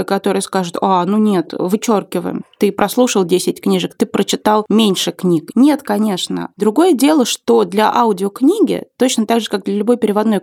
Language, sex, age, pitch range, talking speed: Russian, female, 20-39, 190-240 Hz, 160 wpm